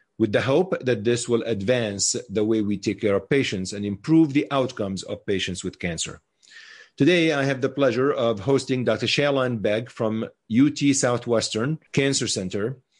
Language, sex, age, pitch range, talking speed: English, male, 40-59, 110-140 Hz, 170 wpm